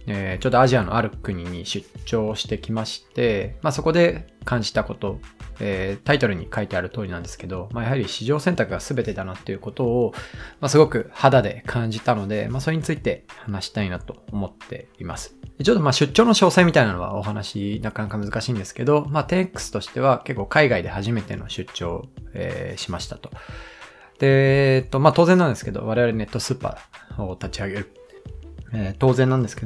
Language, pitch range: Japanese, 100-130 Hz